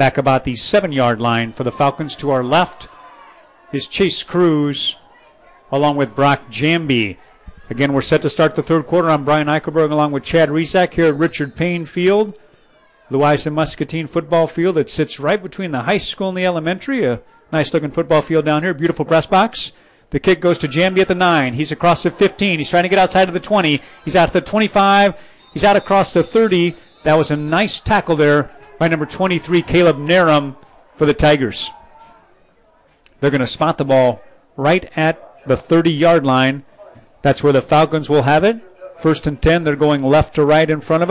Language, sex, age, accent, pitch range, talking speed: English, male, 40-59, American, 145-175 Hz, 195 wpm